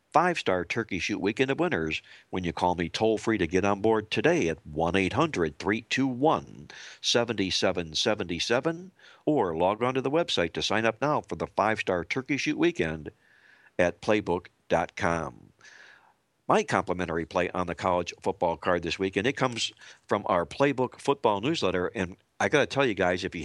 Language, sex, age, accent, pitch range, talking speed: English, male, 60-79, American, 90-120 Hz, 160 wpm